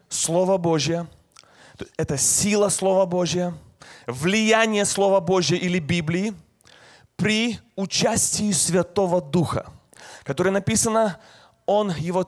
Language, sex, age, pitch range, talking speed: Russian, male, 30-49, 165-205 Hz, 95 wpm